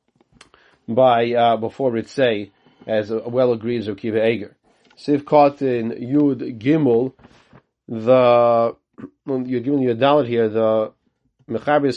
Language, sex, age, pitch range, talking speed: English, male, 40-59, 120-145 Hz, 125 wpm